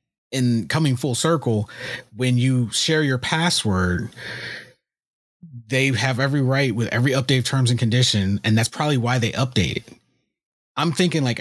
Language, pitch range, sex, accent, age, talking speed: English, 110-140 Hz, male, American, 30-49, 160 wpm